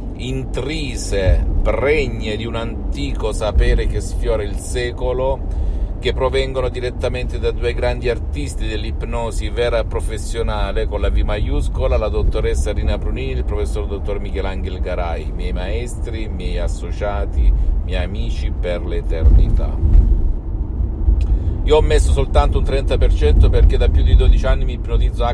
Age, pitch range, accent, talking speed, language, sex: 50-69, 80-105 Hz, native, 135 wpm, Italian, male